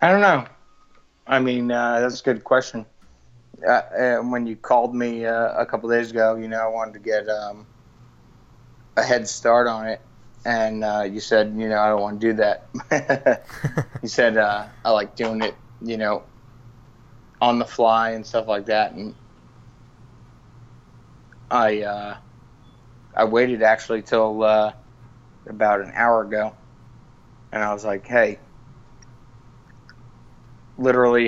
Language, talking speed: English, 150 wpm